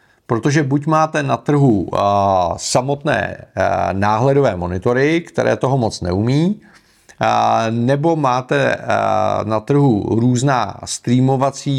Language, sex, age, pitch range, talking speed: Czech, male, 40-59, 115-145 Hz, 90 wpm